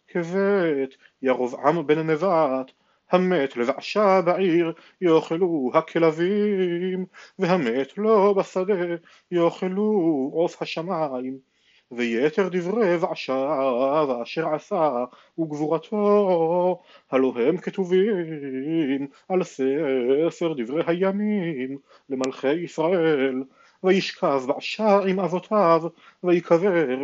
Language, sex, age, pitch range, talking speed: Hebrew, male, 40-59, 140-190 Hz, 75 wpm